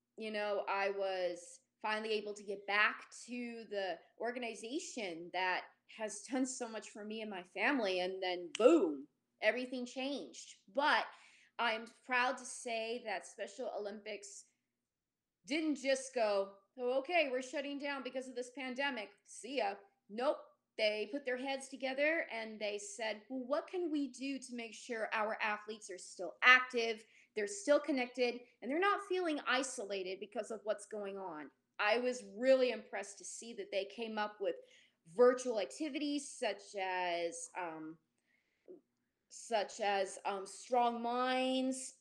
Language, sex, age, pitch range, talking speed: English, female, 30-49, 200-260 Hz, 150 wpm